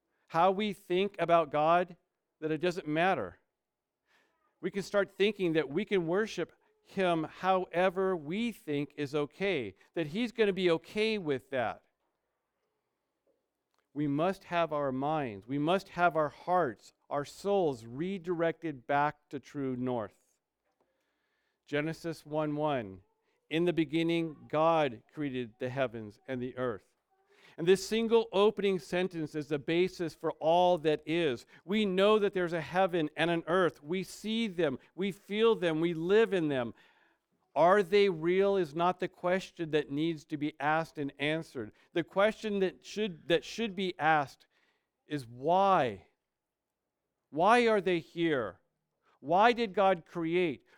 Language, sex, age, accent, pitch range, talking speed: English, male, 50-69, American, 150-195 Hz, 145 wpm